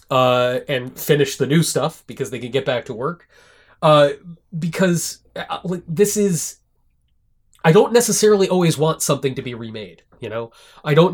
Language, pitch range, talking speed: English, 125-160 Hz, 170 wpm